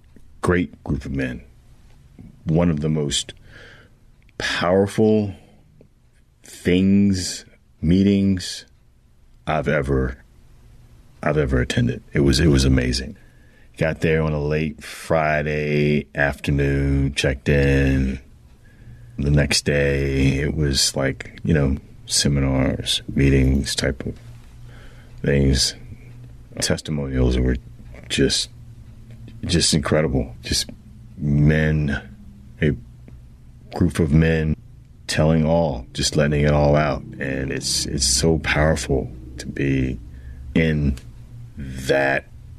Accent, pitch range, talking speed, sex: American, 70-90 Hz, 100 wpm, male